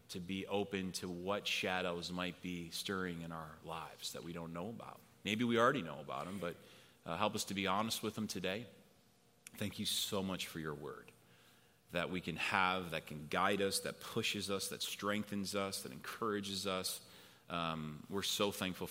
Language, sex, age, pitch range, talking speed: English, male, 30-49, 90-110 Hz, 195 wpm